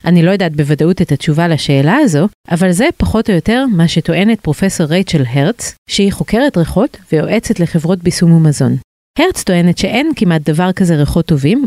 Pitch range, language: 155-205 Hz, Hebrew